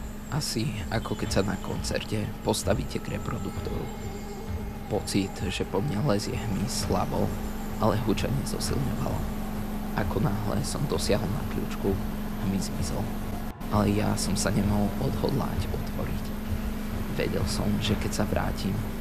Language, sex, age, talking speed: Slovak, male, 20-39, 125 wpm